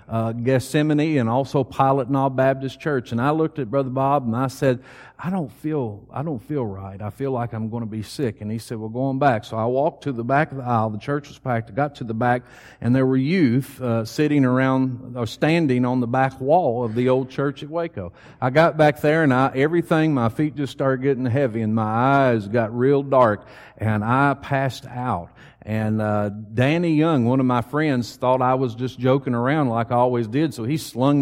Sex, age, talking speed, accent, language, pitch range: male, 50-69, 235 wpm, American, English, 115-140 Hz